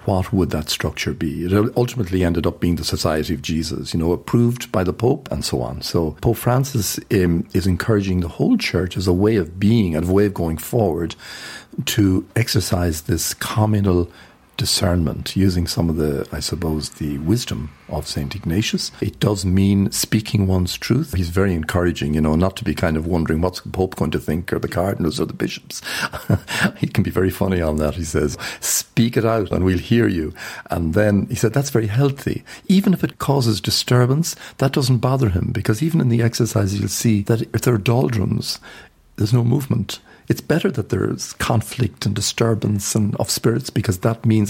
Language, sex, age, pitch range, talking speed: English, male, 50-69, 90-120 Hz, 200 wpm